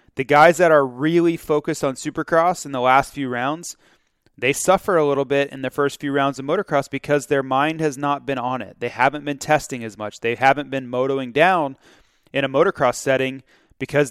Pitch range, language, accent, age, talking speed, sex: 125-145 Hz, English, American, 30-49, 210 wpm, male